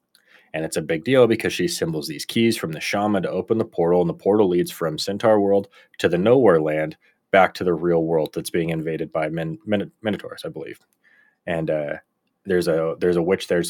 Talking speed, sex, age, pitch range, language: 220 wpm, male, 30-49, 85-105 Hz, English